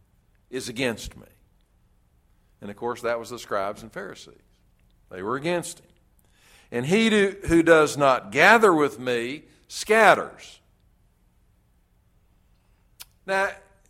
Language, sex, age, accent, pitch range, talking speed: English, male, 60-79, American, 115-165 Hz, 110 wpm